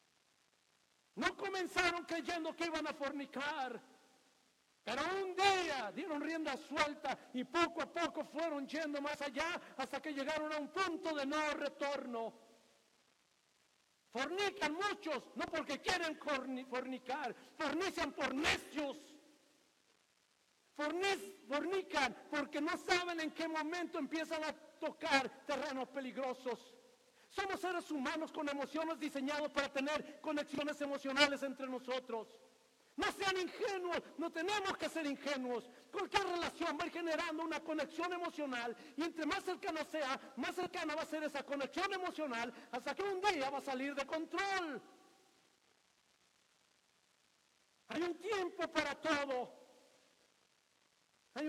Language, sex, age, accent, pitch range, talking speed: Spanish, male, 50-69, Mexican, 275-340 Hz, 120 wpm